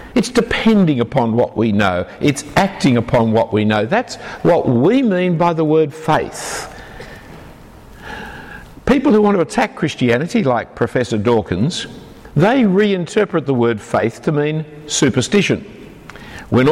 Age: 60-79